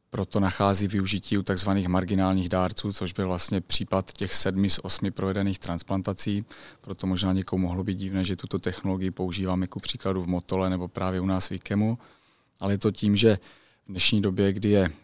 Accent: native